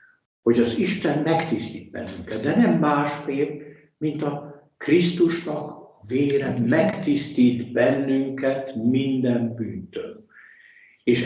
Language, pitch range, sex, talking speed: Hungarian, 115-150 Hz, male, 90 wpm